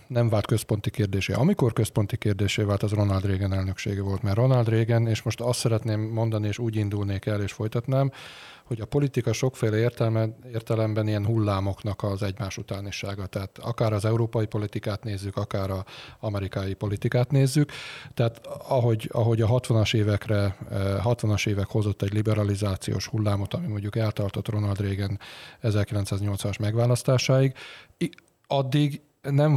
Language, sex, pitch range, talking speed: Hungarian, male, 105-120 Hz, 140 wpm